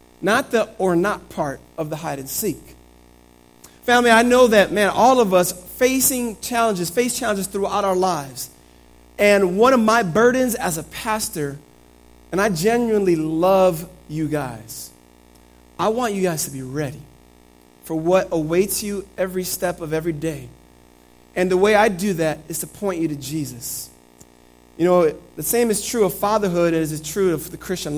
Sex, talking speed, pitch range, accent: male, 175 wpm, 145-220 Hz, American